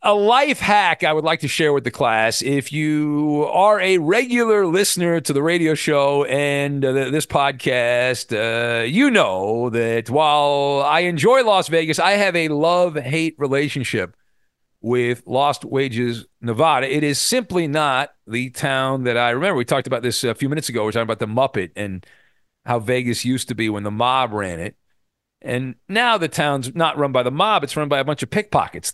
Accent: American